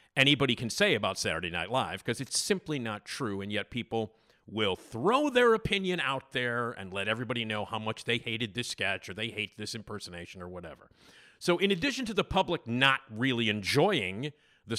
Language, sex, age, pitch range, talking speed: English, male, 50-69, 105-140 Hz, 195 wpm